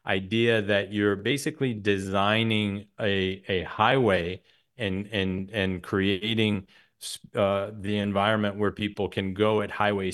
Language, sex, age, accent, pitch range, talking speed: English, male, 30-49, American, 100-125 Hz, 125 wpm